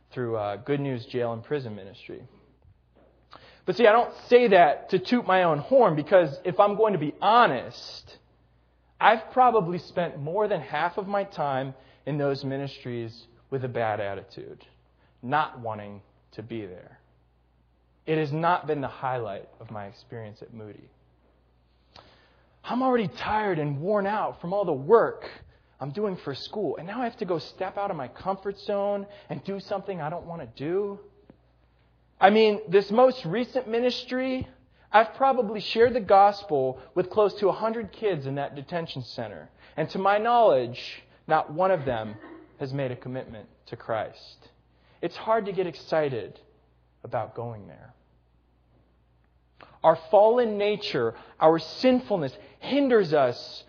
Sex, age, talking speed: male, 20-39, 160 wpm